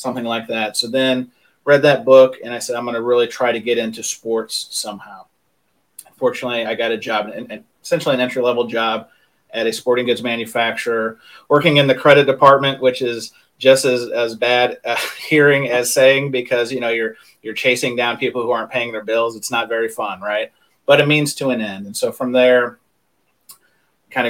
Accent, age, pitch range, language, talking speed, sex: American, 30-49, 115-135 Hz, English, 195 wpm, male